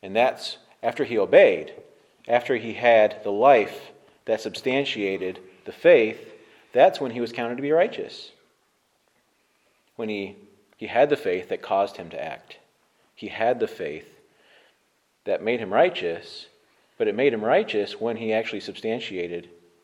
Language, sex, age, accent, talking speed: English, male, 40-59, American, 150 wpm